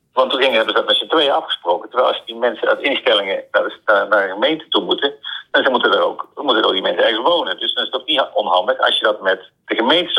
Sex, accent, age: male, Dutch, 50-69